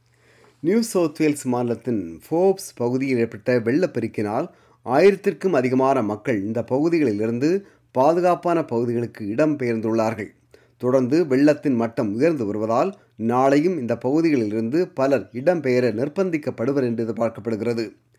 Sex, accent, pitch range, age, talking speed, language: male, native, 125-180 Hz, 30-49, 100 wpm, Tamil